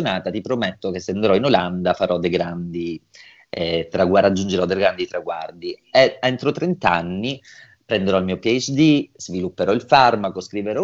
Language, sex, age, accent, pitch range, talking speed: Italian, male, 30-49, native, 95-135 Hz, 155 wpm